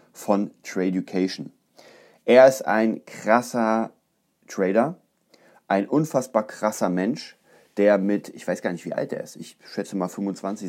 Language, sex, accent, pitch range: German, male, German, 95-110 Hz